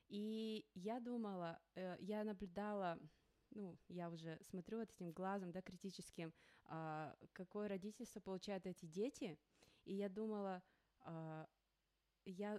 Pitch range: 180-215 Hz